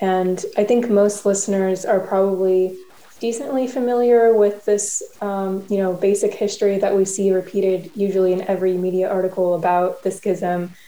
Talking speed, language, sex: 155 wpm, English, female